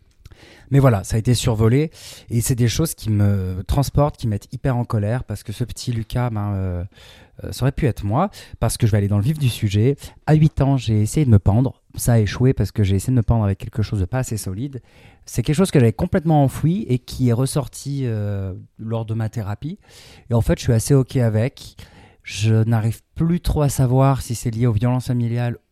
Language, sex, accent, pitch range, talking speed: French, male, French, 105-130 Hz, 240 wpm